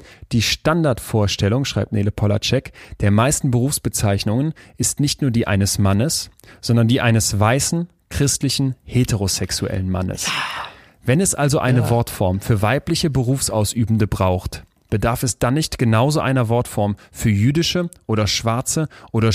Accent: German